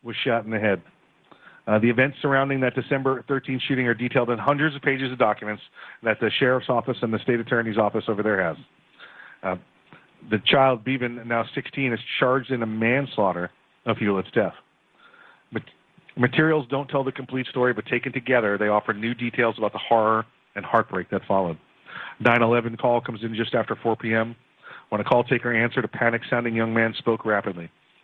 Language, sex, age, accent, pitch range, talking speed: English, male, 40-59, American, 105-125 Hz, 185 wpm